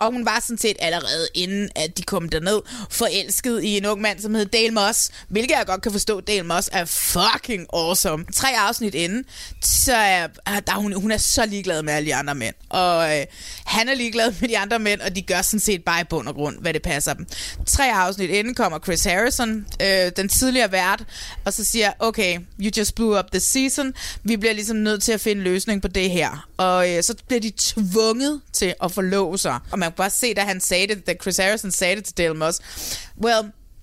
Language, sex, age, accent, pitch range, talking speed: Danish, female, 20-39, native, 180-230 Hz, 220 wpm